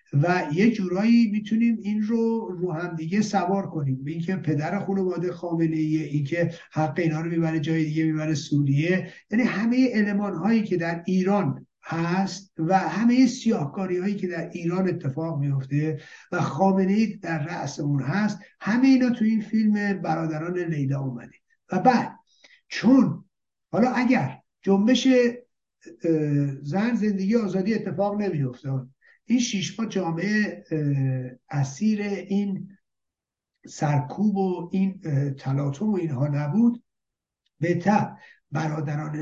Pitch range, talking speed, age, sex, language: 155-210 Hz, 130 wpm, 60-79, male, Persian